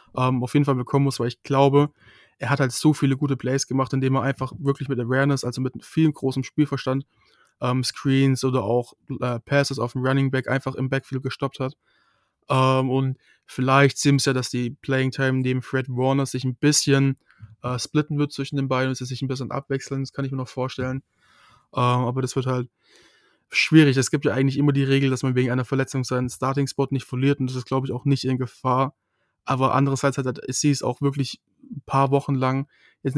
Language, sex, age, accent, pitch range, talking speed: German, male, 20-39, German, 130-140 Hz, 215 wpm